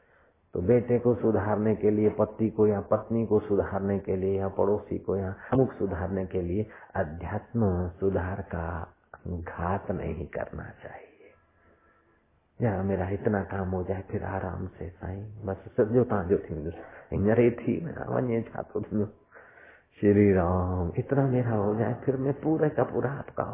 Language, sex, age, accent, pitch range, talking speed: Hindi, male, 50-69, native, 95-125 Hz, 160 wpm